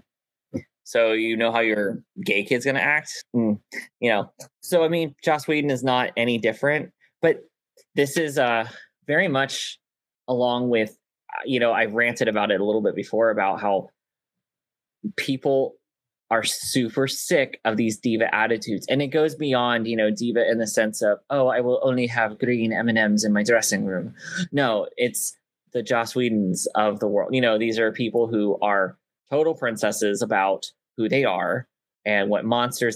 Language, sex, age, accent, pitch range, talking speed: English, male, 20-39, American, 115-145 Hz, 175 wpm